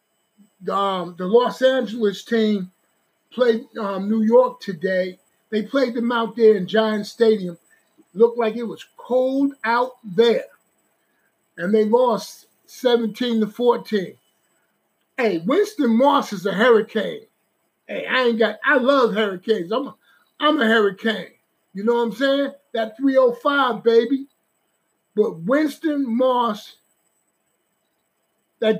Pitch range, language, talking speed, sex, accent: 215-250 Hz, English, 130 wpm, male, American